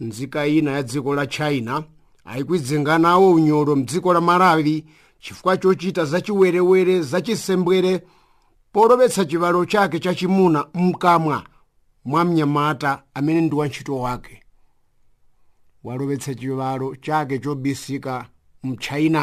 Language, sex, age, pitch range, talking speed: English, male, 50-69, 130-165 Hz, 95 wpm